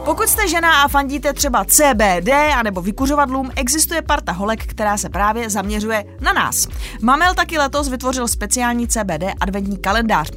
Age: 20-39